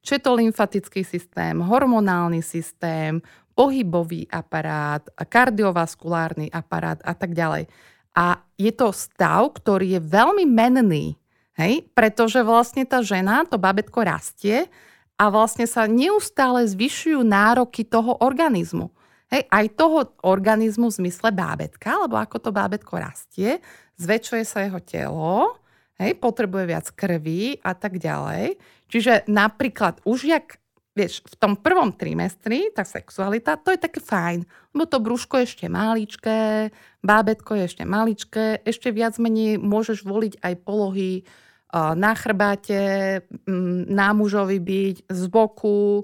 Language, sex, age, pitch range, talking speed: Slovak, female, 30-49, 185-230 Hz, 125 wpm